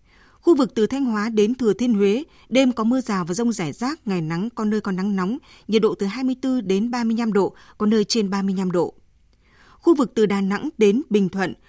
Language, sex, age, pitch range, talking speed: Vietnamese, female, 20-39, 190-235 Hz, 225 wpm